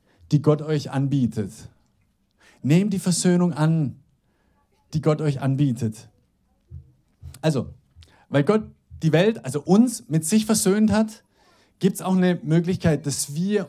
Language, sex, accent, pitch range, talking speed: German, male, German, 140-175 Hz, 130 wpm